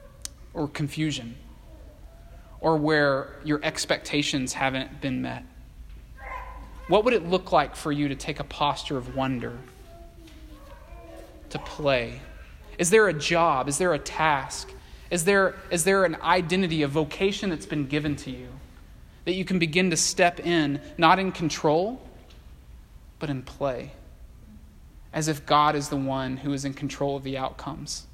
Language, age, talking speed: English, 20-39, 150 wpm